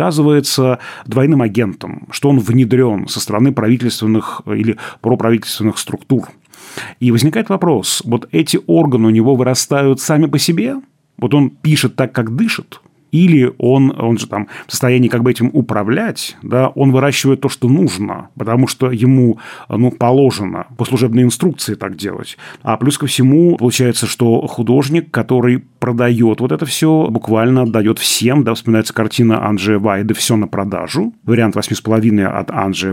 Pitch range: 110-140 Hz